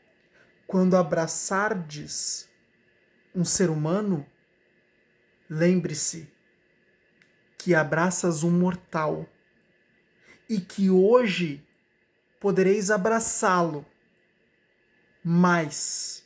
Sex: male